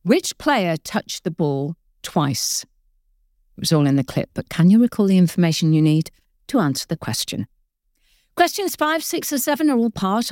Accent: British